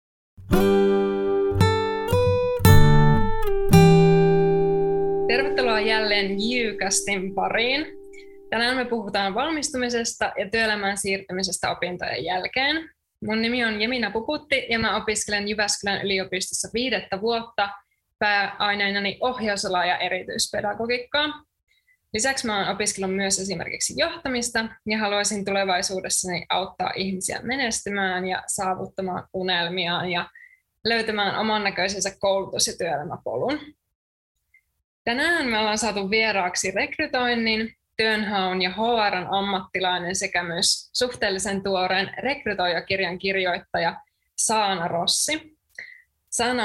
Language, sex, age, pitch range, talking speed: Finnish, female, 20-39, 190-235 Hz, 90 wpm